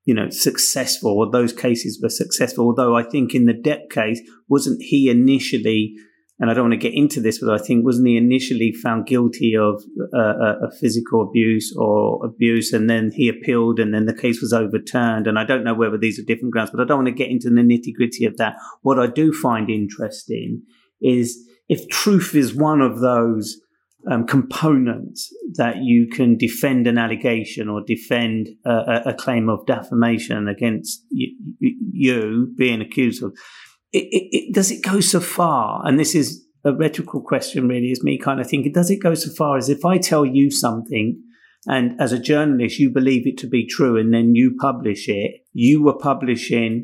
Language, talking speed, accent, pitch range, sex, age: English, 200 wpm, British, 115-135 Hz, male, 30-49